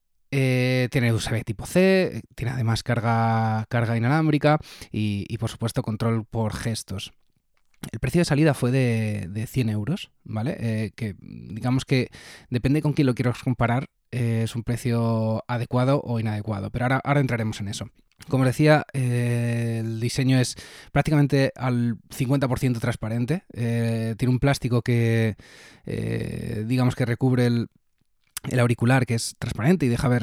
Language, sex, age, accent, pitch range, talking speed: Spanish, male, 20-39, Spanish, 110-130 Hz, 155 wpm